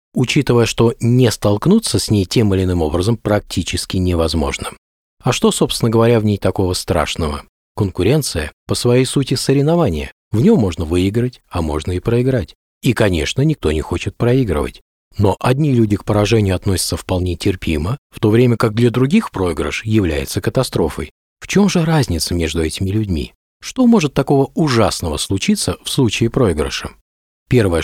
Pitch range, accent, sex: 85-125 Hz, native, male